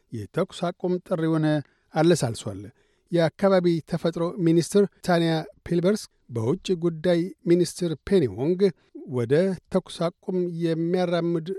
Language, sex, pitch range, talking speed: Amharic, male, 155-180 Hz, 90 wpm